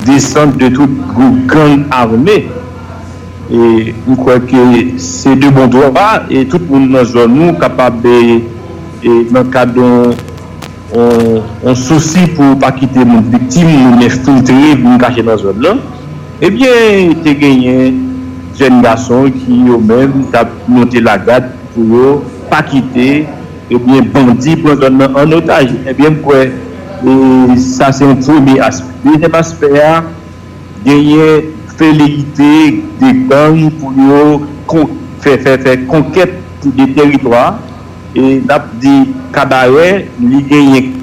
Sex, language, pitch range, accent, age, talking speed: male, English, 120-150 Hz, French, 60-79, 140 wpm